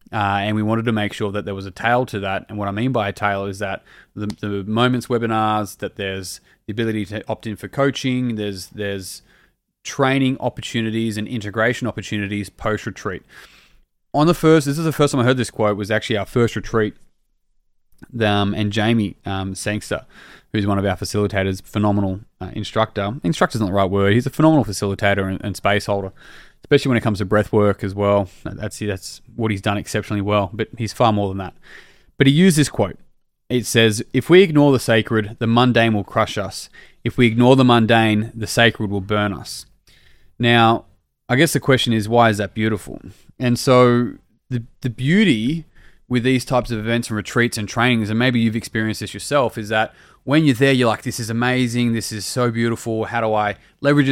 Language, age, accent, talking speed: English, 20-39, Australian, 205 wpm